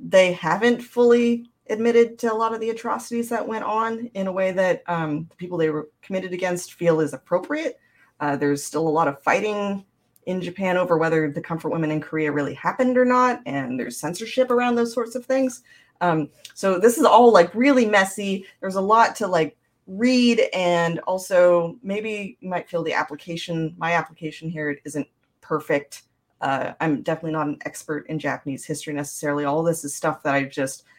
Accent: American